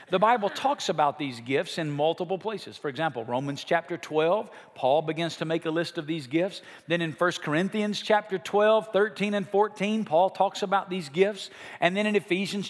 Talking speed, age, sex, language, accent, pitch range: 195 wpm, 50-69, male, English, American, 165-220 Hz